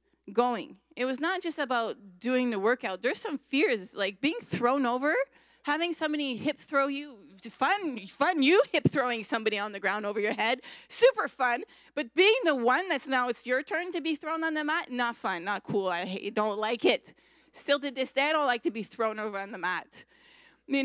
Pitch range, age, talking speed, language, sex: 200-275 Hz, 30-49, 210 wpm, English, female